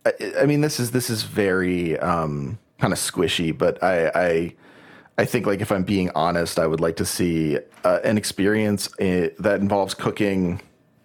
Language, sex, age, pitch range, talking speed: English, male, 30-49, 85-110 Hz, 175 wpm